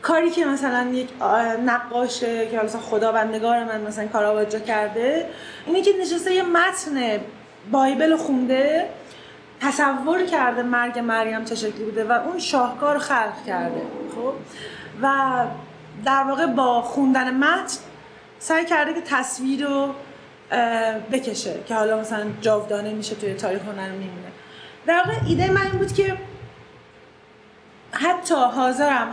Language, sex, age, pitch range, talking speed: Persian, female, 30-49, 225-280 Hz, 130 wpm